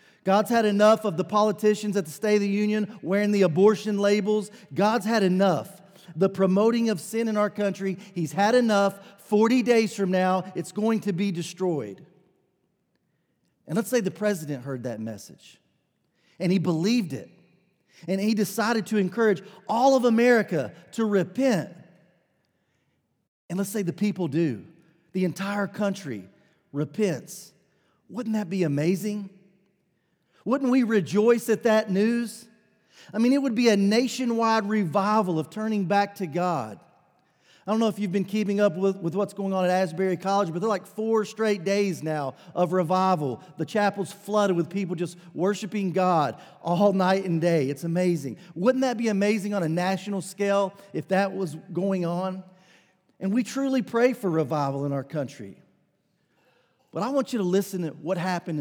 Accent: American